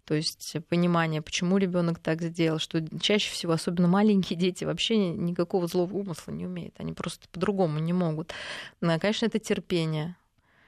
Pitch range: 170-200 Hz